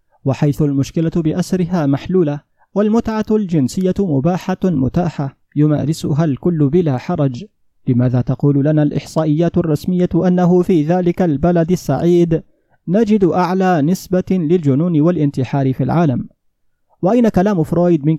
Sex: male